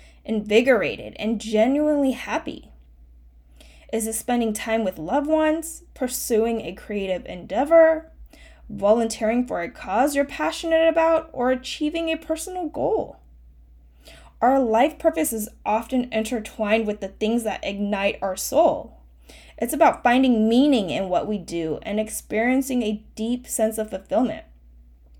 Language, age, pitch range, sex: English, 10-29, 170-270 Hz, female